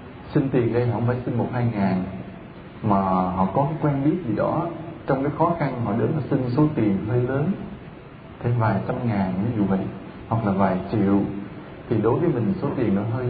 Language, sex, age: English, male, 20-39